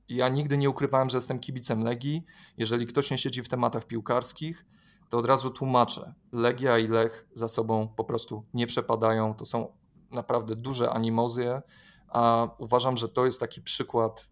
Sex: male